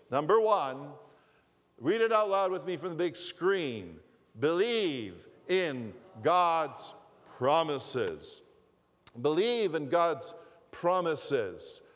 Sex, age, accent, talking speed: male, 50-69, American, 100 wpm